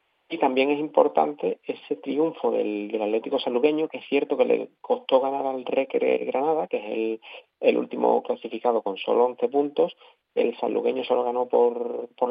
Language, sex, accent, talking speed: Spanish, male, Spanish, 175 wpm